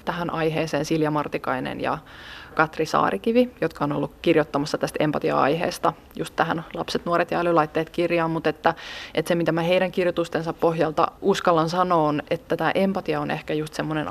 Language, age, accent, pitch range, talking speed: Finnish, 20-39, native, 155-175 Hz, 165 wpm